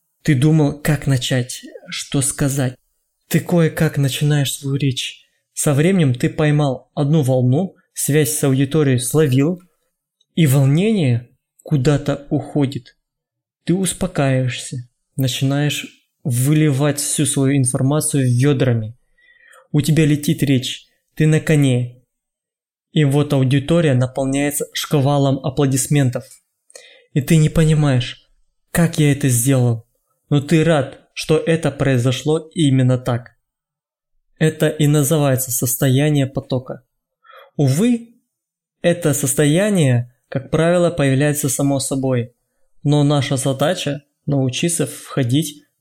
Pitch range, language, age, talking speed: 130-155 Hz, Russian, 20-39, 105 wpm